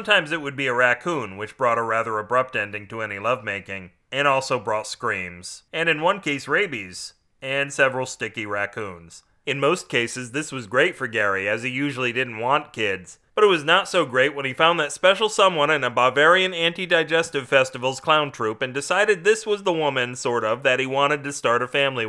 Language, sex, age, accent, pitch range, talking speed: English, male, 30-49, American, 120-150 Hz, 205 wpm